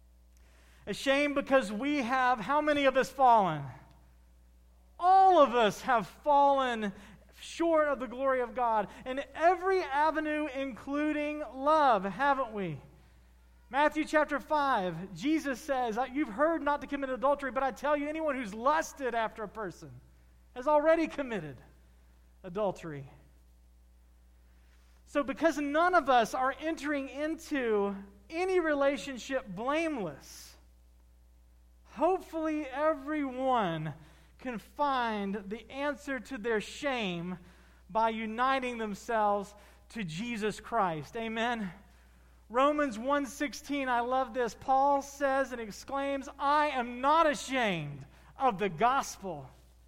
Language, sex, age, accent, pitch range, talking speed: English, male, 40-59, American, 190-290 Hz, 115 wpm